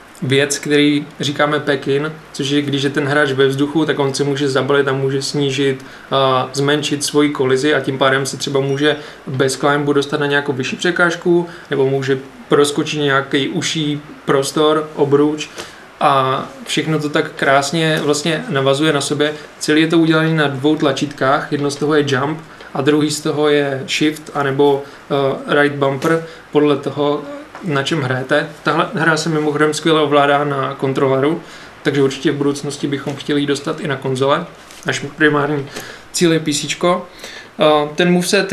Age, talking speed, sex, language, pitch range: 20-39, 160 wpm, male, Czech, 140-155 Hz